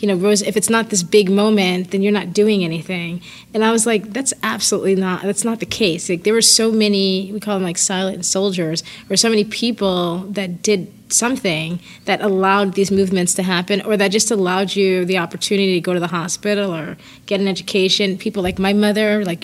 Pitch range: 190-215 Hz